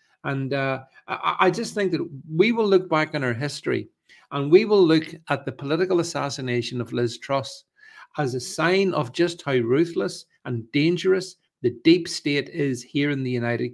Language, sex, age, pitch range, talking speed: English, male, 50-69, 125-175 Hz, 180 wpm